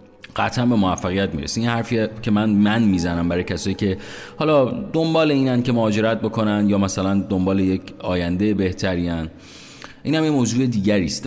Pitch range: 90-110 Hz